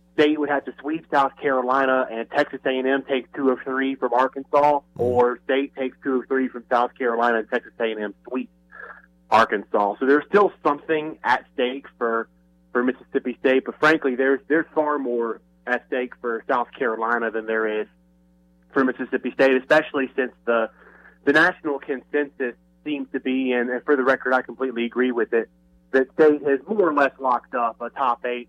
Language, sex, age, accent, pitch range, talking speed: English, male, 30-49, American, 115-135 Hz, 190 wpm